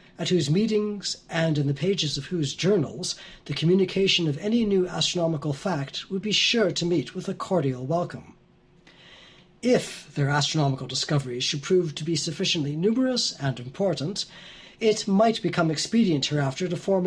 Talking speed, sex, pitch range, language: 160 wpm, male, 145-190 Hz, English